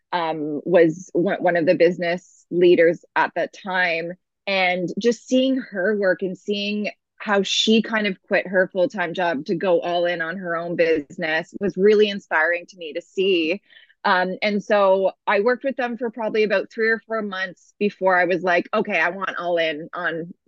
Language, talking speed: English, 190 wpm